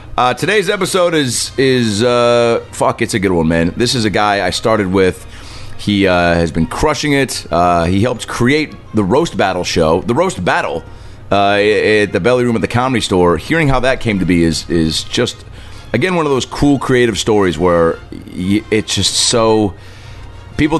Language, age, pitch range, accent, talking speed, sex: English, 30-49, 85-115 Hz, American, 190 wpm, male